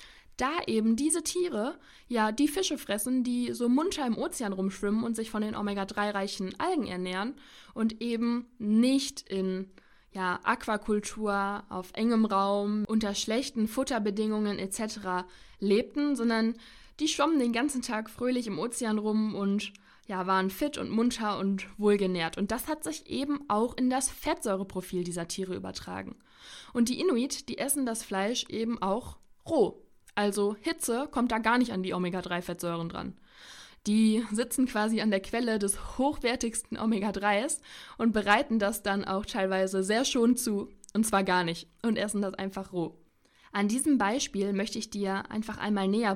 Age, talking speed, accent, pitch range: 20-39, 155 wpm, German, 195-240 Hz